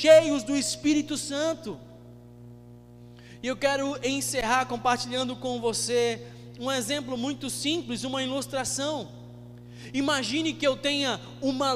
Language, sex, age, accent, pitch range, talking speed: Portuguese, male, 20-39, Brazilian, 165-275 Hz, 110 wpm